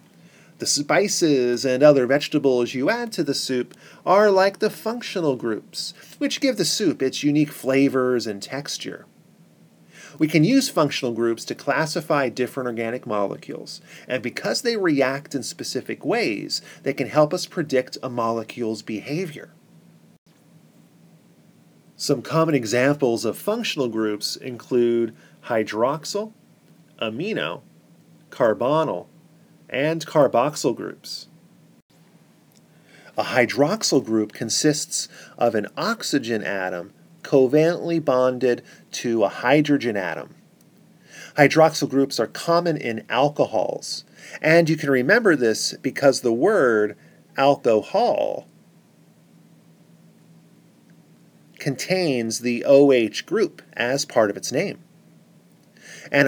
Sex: male